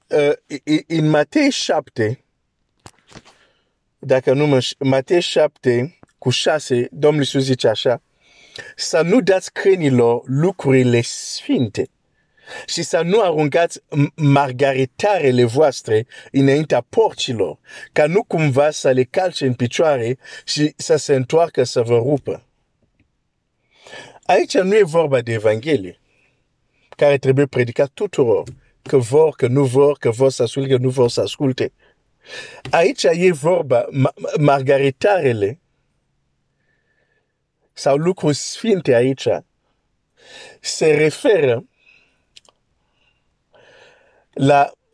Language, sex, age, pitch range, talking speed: Romanian, male, 50-69, 135-170 Hz, 110 wpm